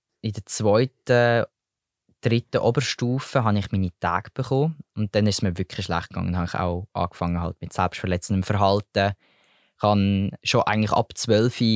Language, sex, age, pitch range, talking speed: German, male, 20-39, 100-120 Hz, 170 wpm